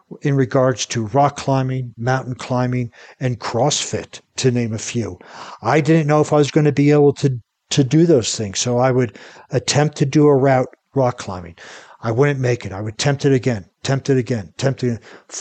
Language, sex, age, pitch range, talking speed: English, male, 60-79, 120-140 Hz, 205 wpm